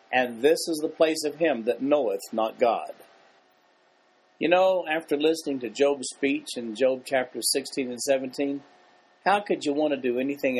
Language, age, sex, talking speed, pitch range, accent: English, 50-69, male, 175 wpm, 120-165 Hz, American